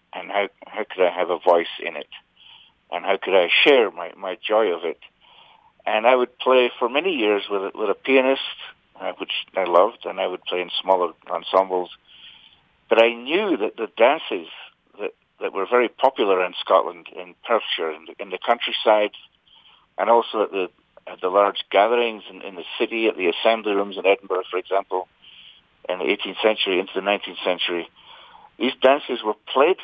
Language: English